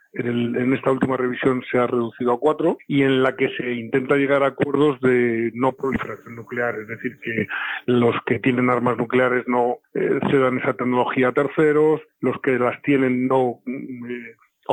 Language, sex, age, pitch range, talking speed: Spanish, male, 40-59, 120-135 Hz, 185 wpm